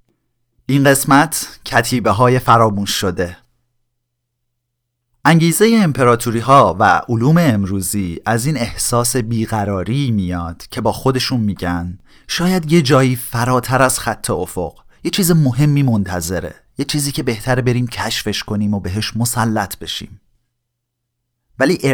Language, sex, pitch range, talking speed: Persian, male, 105-130 Hz, 120 wpm